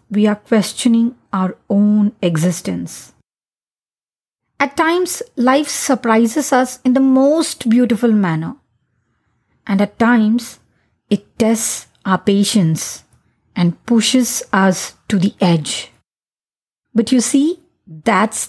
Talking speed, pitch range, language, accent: 105 wpm, 195-245 Hz, Hindi, native